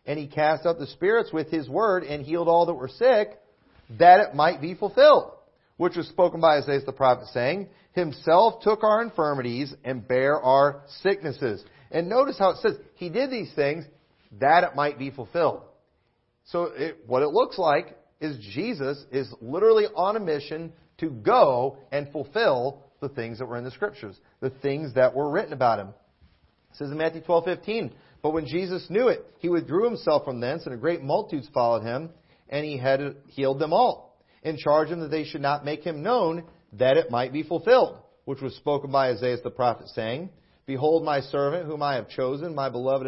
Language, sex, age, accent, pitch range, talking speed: English, male, 40-59, American, 135-175 Hz, 195 wpm